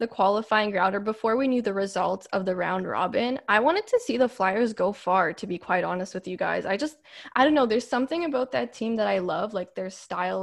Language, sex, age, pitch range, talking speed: English, female, 10-29, 195-255 Hz, 245 wpm